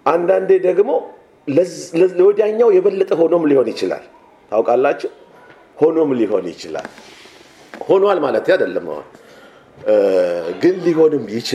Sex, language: male, English